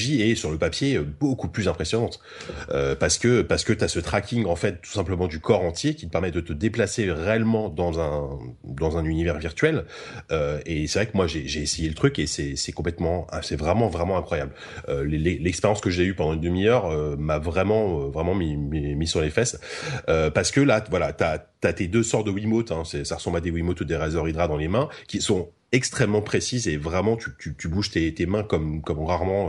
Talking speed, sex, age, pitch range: 235 wpm, male, 30-49, 80-100 Hz